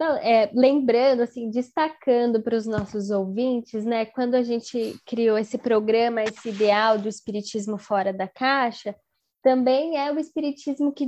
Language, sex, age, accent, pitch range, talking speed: Portuguese, female, 10-29, Brazilian, 215-270 Hz, 145 wpm